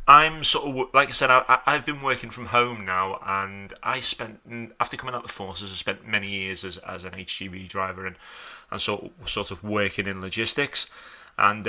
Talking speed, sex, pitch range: 210 wpm, male, 100-120 Hz